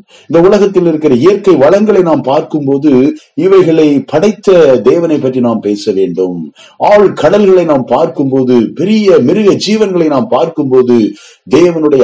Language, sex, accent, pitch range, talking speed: Tamil, male, native, 120-170 Hz, 115 wpm